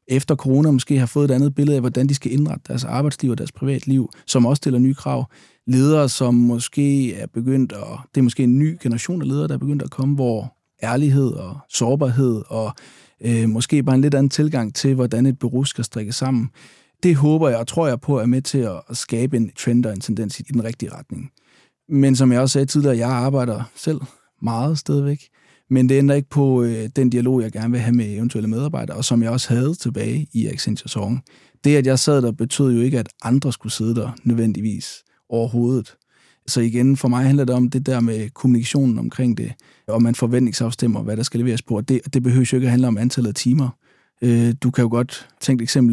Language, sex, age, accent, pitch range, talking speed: Danish, male, 30-49, native, 120-135 Hz, 220 wpm